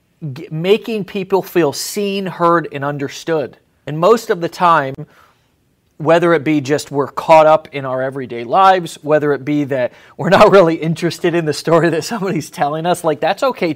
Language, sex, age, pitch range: English, male, 30-49, 145-170 Hz